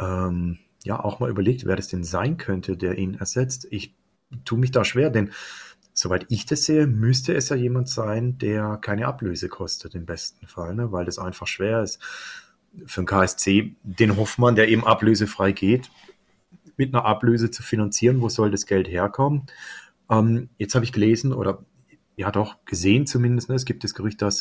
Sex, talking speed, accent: male, 180 wpm, German